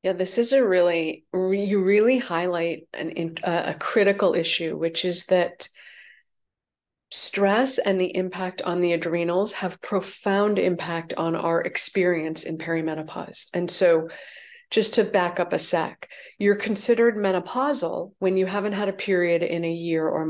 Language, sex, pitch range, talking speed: English, female, 175-210 Hz, 155 wpm